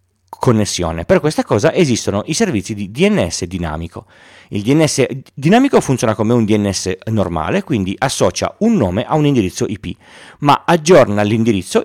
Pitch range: 95-130 Hz